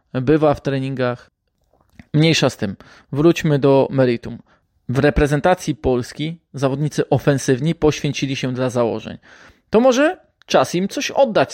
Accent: native